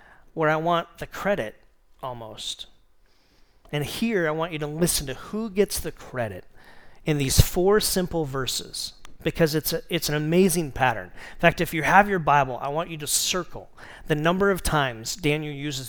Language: English